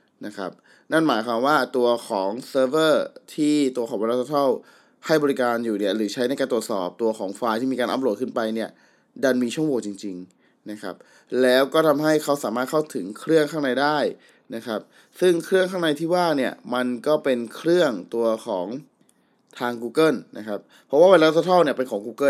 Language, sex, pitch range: Thai, male, 120-150 Hz